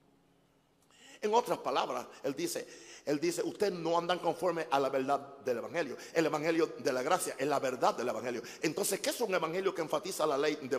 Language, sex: Spanish, male